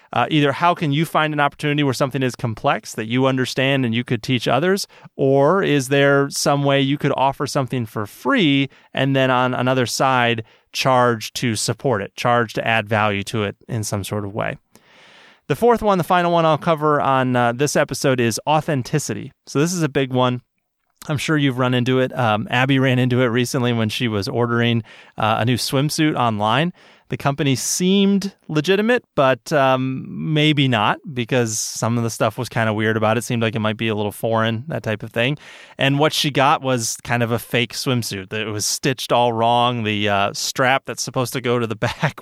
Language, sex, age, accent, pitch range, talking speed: English, male, 30-49, American, 115-145 Hz, 215 wpm